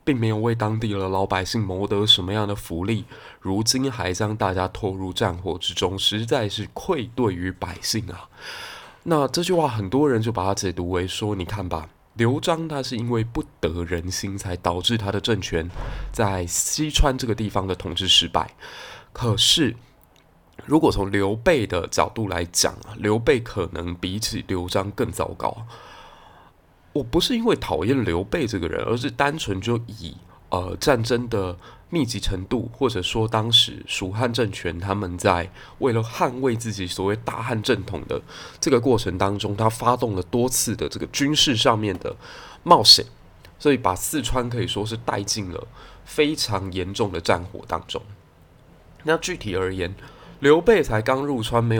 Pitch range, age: 95-120 Hz, 20-39